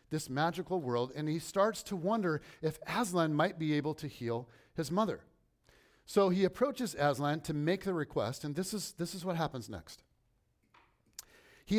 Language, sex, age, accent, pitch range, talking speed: English, male, 40-59, American, 135-200 Hz, 175 wpm